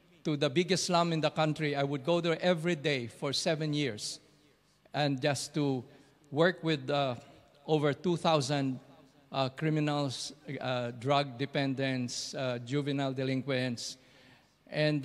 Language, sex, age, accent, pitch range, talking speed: English, male, 50-69, Filipino, 135-155 Hz, 130 wpm